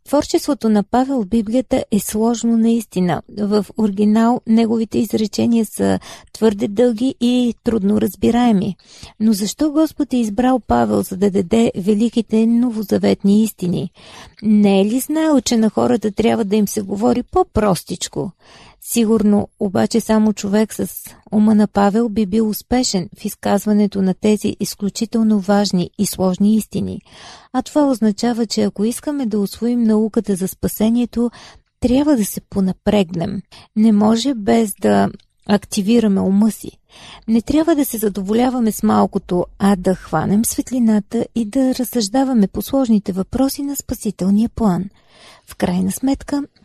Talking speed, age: 140 wpm, 40-59